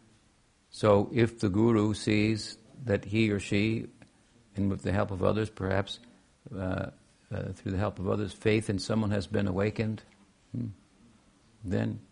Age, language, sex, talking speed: 60-79, English, male, 155 wpm